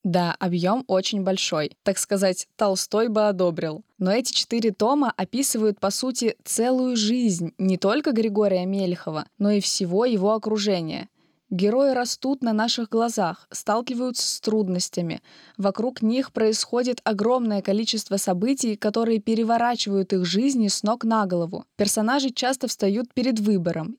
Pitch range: 190-235 Hz